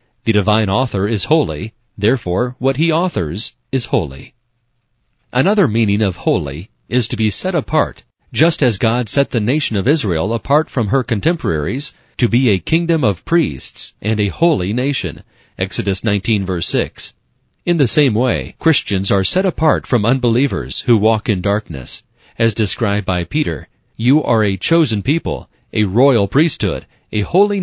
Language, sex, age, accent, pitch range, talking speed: English, male, 40-59, American, 100-130 Hz, 160 wpm